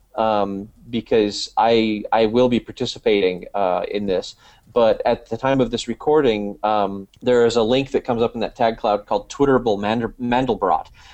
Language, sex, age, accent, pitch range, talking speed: English, male, 30-49, American, 105-130 Hz, 170 wpm